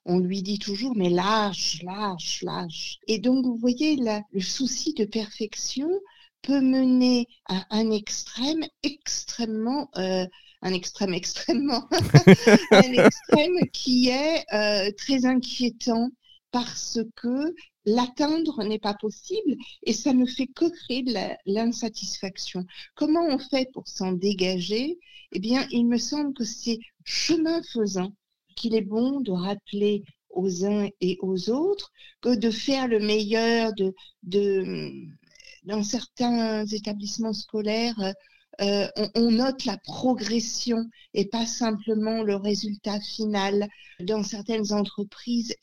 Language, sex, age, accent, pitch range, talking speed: French, female, 50-69, French, 200-255 Hz, 130 wpm